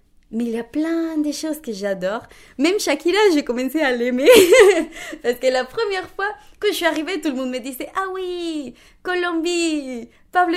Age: 20-39